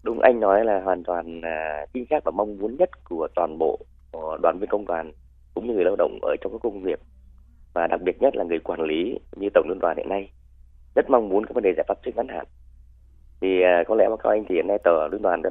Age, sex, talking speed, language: 30-49, male, 270 wpm, Vietnamese